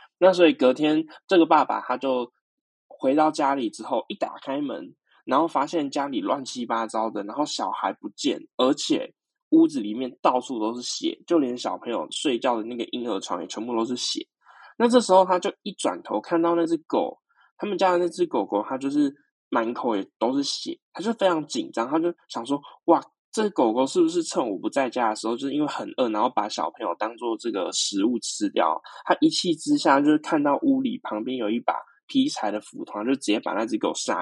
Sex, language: male, Chinese